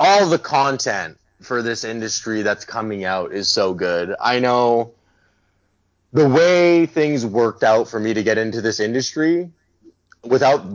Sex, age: male, 20-39